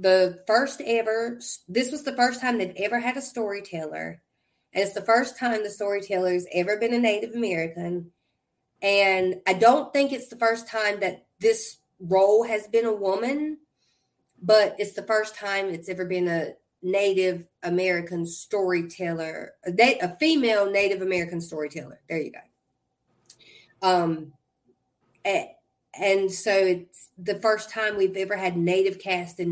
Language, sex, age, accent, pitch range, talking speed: English, female, 30-49, American, 180-230 Hz, 150 wpm